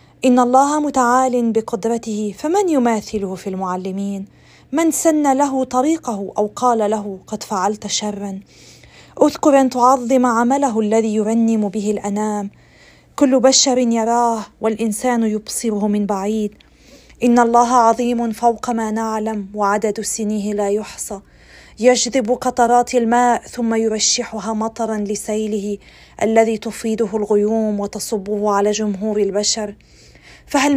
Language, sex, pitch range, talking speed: Arabic, female, 210-240 Hz, 115 wpm